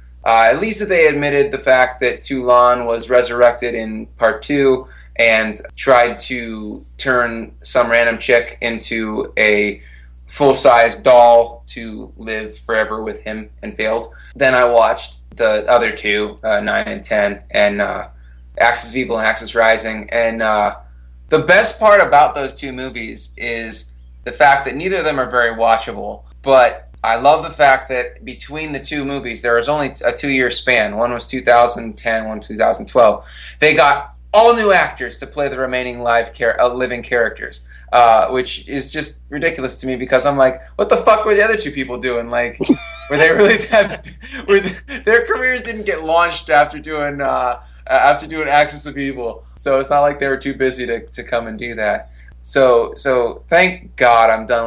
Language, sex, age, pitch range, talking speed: English, male, 20-39, 110-140 Hz, 180 wpm